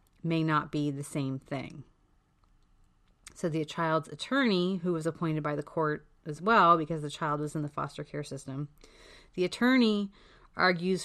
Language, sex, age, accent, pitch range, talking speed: English, female, 30-49, American, 150-180 Hz, 165 wpm